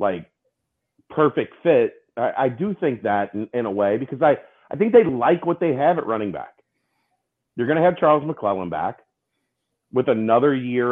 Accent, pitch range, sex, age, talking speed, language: American, 105-155 Hz, male, 40-59, 180 wpm, English